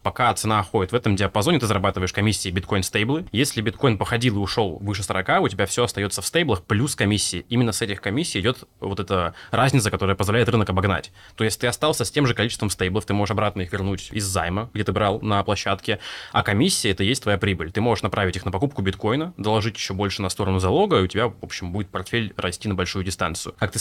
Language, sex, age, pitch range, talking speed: Russian, male, 20-39, 95-115 Hz, 230 wpm